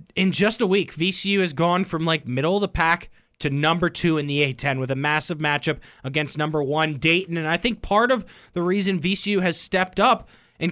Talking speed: 220 wpm